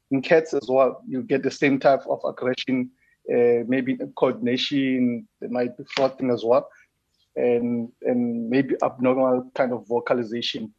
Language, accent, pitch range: English, South African, 120-160 Hz